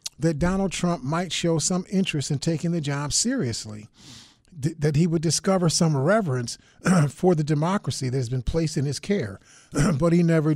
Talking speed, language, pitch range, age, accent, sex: 175 wpm, English, 145-175 Hz, 50-69, American, male